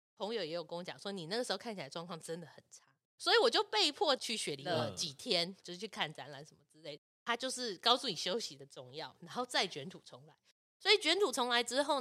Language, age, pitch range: Chinese, 20-39, 175-285 Hz